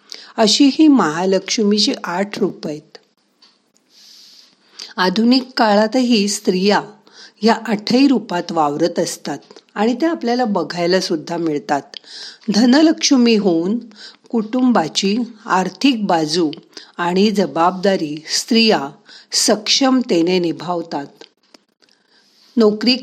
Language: Marathi